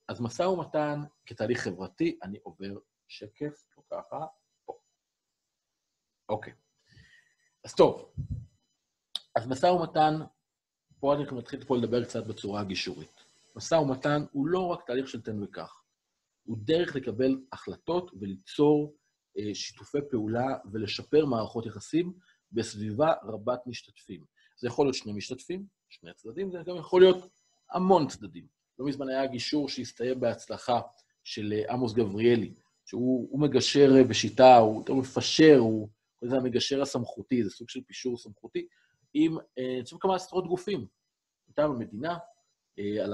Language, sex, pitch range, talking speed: Hebrew, male, 110-155 Hz, 130 wpm